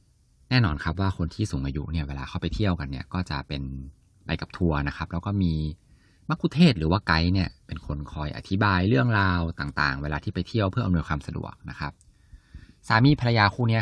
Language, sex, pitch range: Thai, male, 75-105 Hz